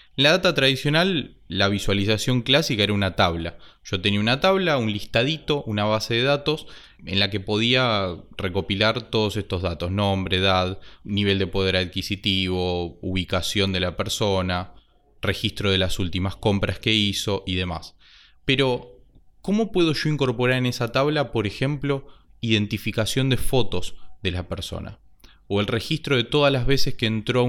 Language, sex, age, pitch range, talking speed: Spanish, male, 20-39, 100-135 Hz, 155 wpm